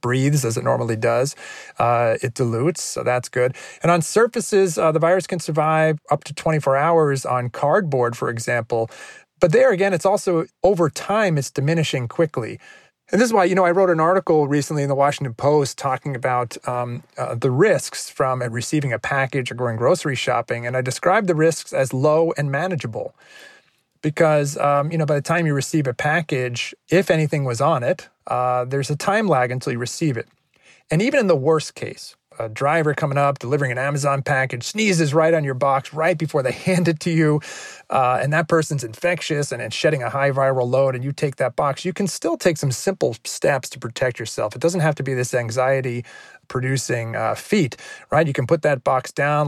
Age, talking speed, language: 30-49, 205 wpm, English